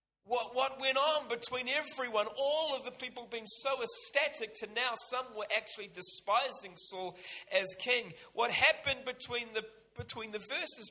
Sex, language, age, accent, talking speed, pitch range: male, English, 40-59, Australian, 155 wpm, 160-220 Hz